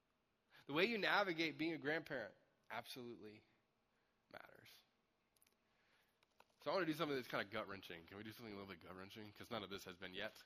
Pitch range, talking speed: 115-185 Hz, 195 wpm